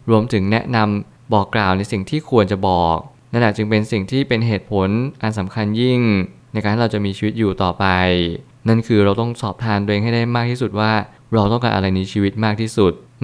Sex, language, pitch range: male, Thai, 100-120 Hz